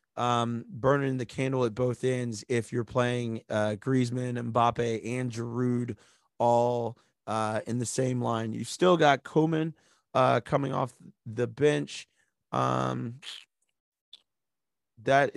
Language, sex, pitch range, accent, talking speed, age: English, male, 115-140 Hz, American, 125 wpm, 30-49